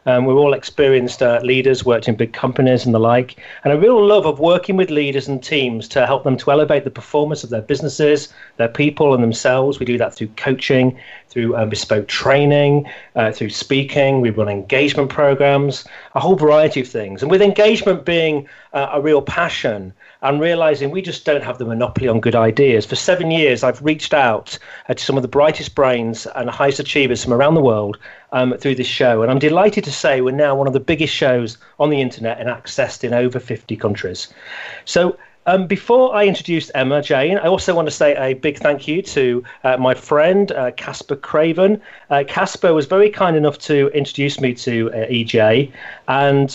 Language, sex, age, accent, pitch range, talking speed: English, male, 40-59, British, 125-155 Hz, 200 wpm